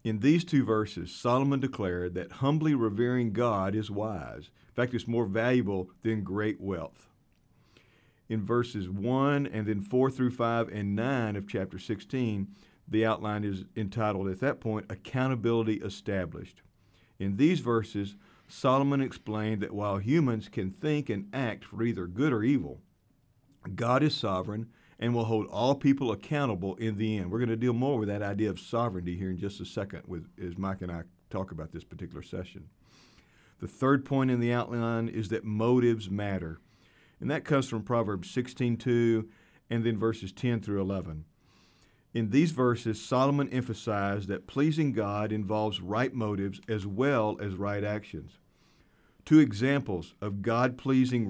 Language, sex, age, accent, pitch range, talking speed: English, male, 50-69, American, 100-125 Hz, 160 wpm